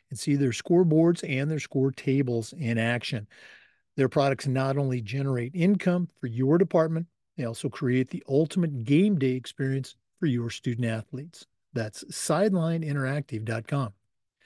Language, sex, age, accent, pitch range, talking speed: English, male, 50-69, American, 125-165 Hz, 135 wpm